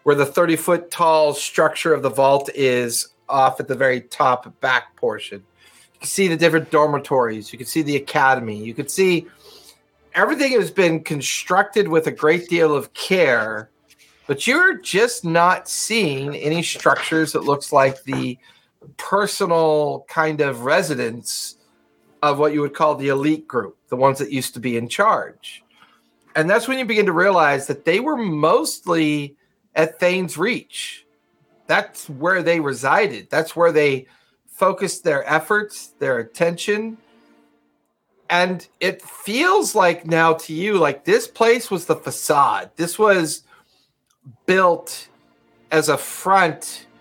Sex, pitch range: male, 140-185 Hz